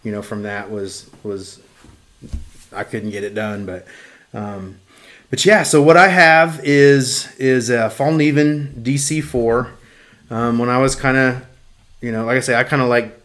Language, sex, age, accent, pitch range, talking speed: English, male, 30-49, American, 105-120 Hz, 180 wpm